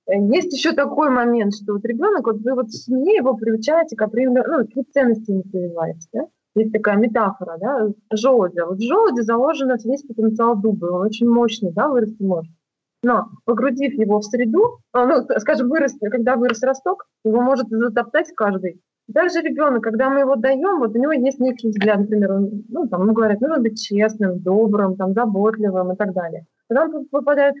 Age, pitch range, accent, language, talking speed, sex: 20-39, 205-270 Hz, native, Russian, 180 wpm, female